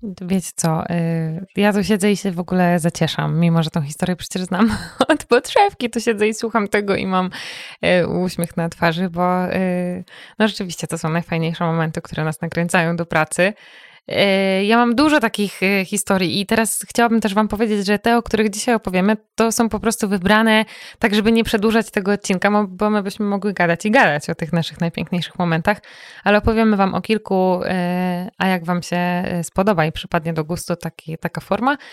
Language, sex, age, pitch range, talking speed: Polish, female, 20-39, 165-210 Hz, 180 wpm